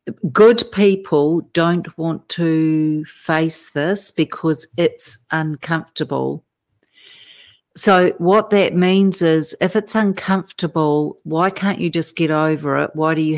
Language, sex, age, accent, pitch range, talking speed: English, female, 50-69, Australian, 155-190 Hz, 125 wpm